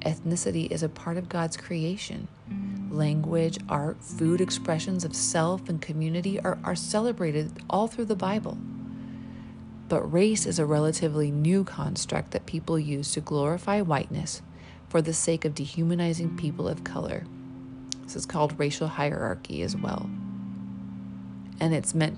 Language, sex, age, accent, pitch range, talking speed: English, female, 30-49, American, 130-170 Hz, 145 wpm